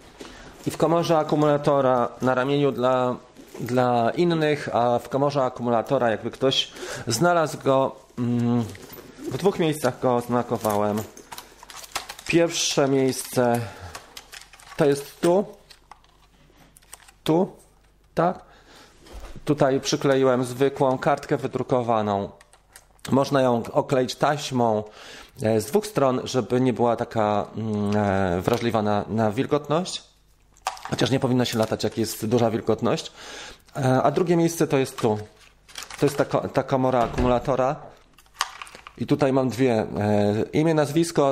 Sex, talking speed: male, 110 wpm